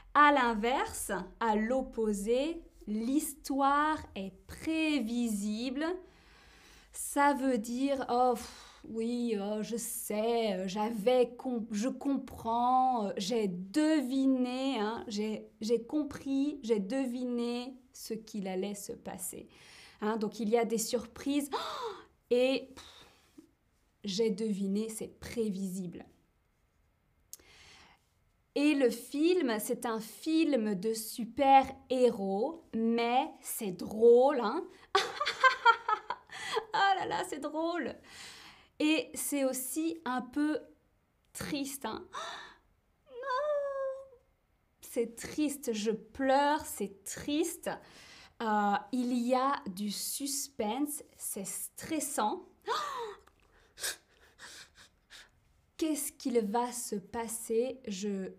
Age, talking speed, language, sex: 20-39, 90 wpm, French, female